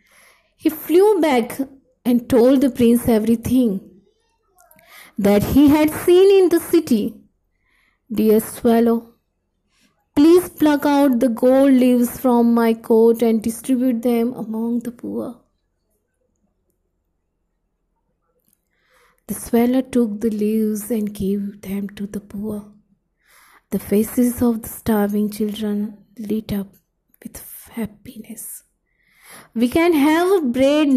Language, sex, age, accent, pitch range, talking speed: English, female, 20-39, Indian, 210-255 Hz, 110 wpm